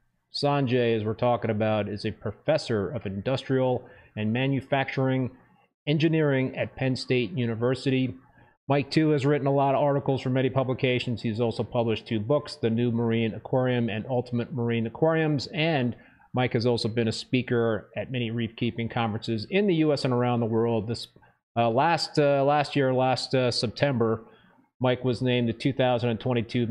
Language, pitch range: English, 115-135 Hz